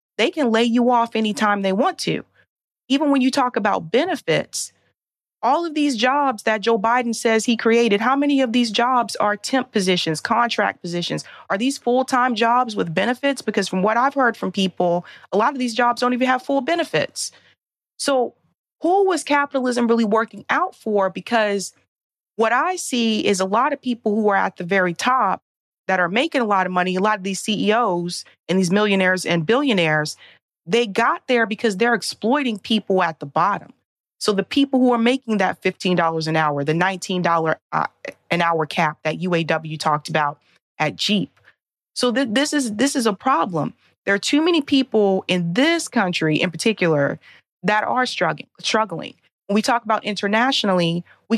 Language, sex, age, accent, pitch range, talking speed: English, female, 30-49, American, 185-250 Hz, 185 wpm